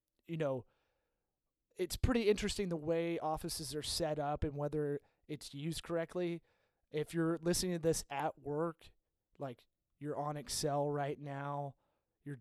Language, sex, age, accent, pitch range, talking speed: English, male, 30-49, American, 145-175 Hz, 145 wpm